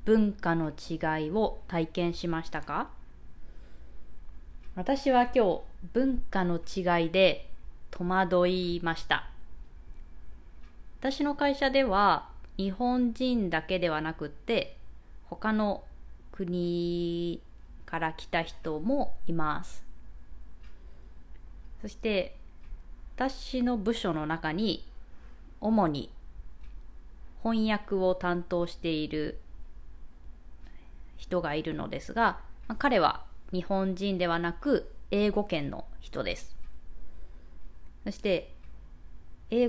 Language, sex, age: Japanese, female, 20-39